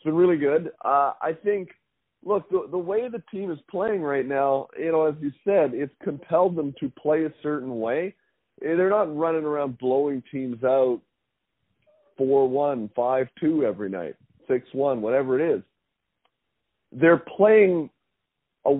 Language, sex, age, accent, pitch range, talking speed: English, male, 40-59, American, 115-155 Hz, 155 wpm